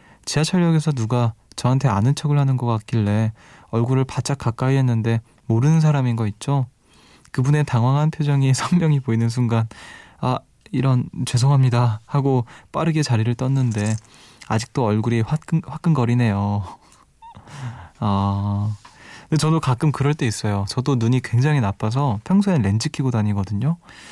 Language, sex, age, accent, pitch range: Korean, male, 20-39, native, 110-145 Hz